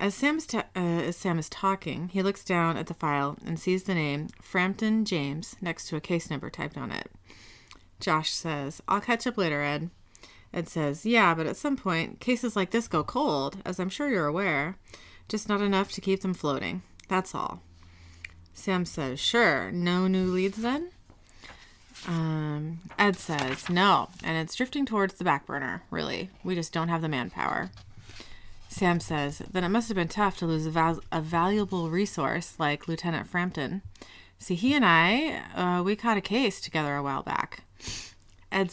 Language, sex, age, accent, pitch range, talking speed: English, female, 30-49, American, 145-200 Hz, 180 wpm